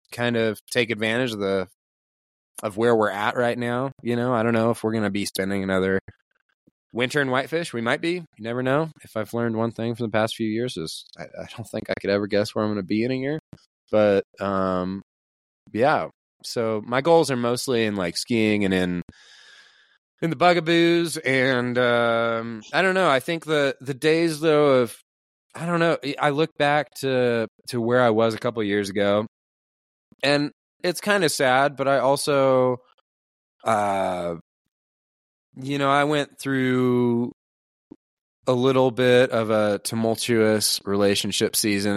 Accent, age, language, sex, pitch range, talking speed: American, 20-39, English, male, 100-130 Hz, 180 wpm